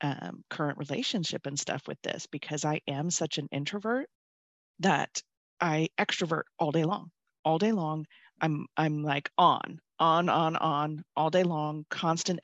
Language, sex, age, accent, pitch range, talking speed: English, female, 30-49, American, 150-185 Hz, 160 wpm